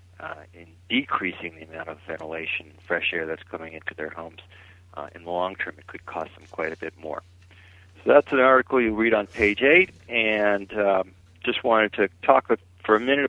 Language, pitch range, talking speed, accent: English, 90-130 Hz, 210 wpm, American